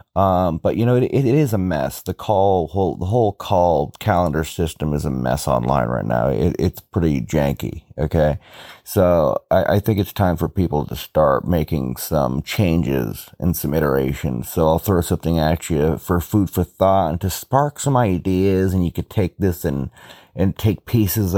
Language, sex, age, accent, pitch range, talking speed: English, male, 30-49, American, 80-95 Hz, 190 wpm